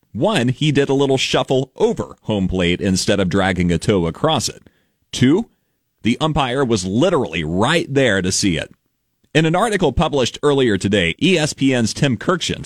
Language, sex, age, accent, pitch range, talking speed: English, male, 30-49, American, 110-145 Hz, 165 wpm